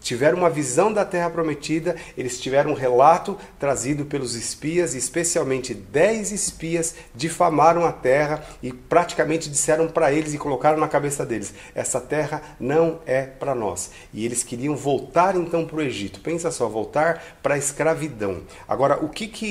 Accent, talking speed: Brazilian, 155 wpm